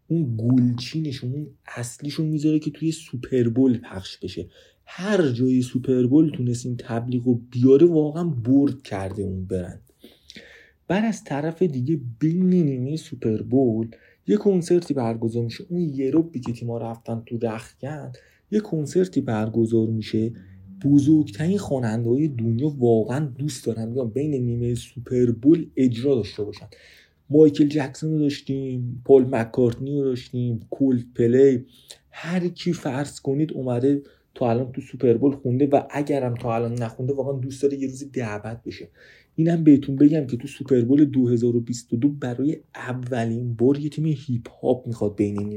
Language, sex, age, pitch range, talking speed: Persian, male, 30-49, 120-150 Hz, 140 wpm